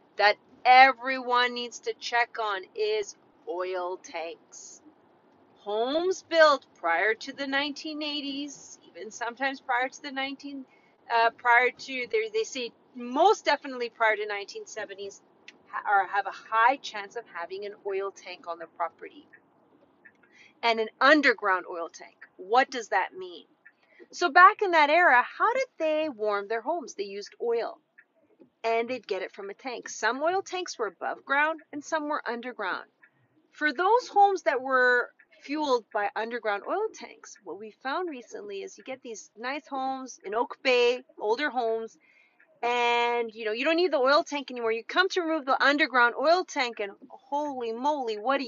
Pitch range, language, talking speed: 230-325 Hz, English, 165 wpm